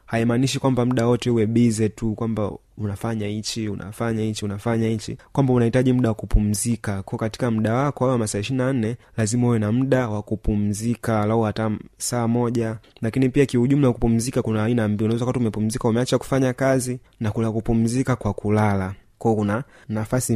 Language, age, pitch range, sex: Swahili, 20-39, 105-125 Hz, male